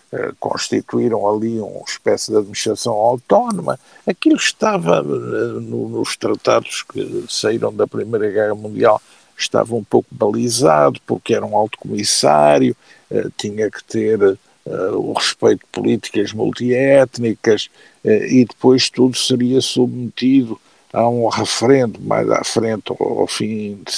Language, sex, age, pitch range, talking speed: Portuguese, male, 50-69, 110-130 Hz, 125 wpm